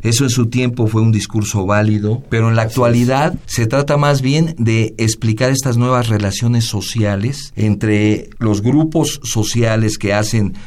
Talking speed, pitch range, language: 160 wpm, 105-130 Hz, Spanish